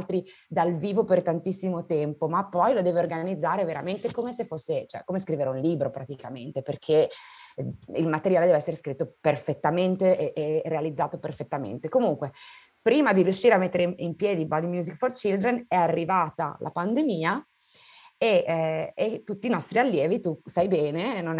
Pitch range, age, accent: 155-200 Hz, 20-39, native